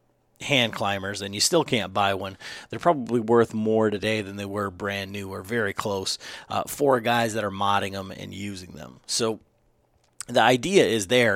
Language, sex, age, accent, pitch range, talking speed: English, male, 30-49, American, 100-120 Hz, 190 wpm